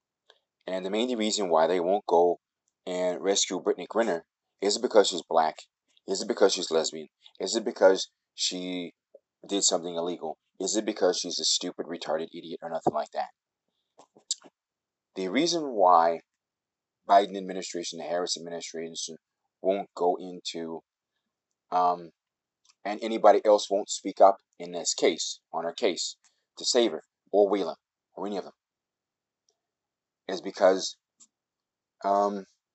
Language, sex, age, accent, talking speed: English, male, 30-49, American, 140 wpm